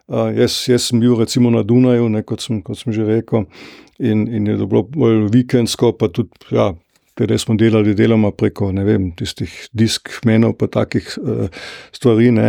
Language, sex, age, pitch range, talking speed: German, male, 50-69, 110-120 Hz, 175 wpm